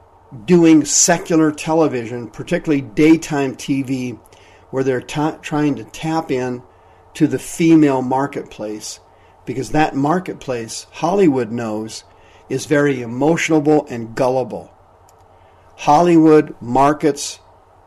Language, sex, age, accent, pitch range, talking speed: English, male, 50-69, American, 110-150 Hz, 95 wpm